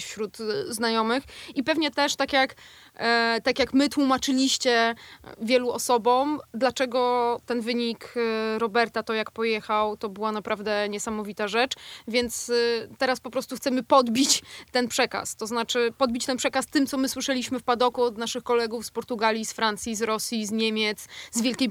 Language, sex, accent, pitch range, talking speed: Polish, female, native, 225-260 Hz, 155 wpm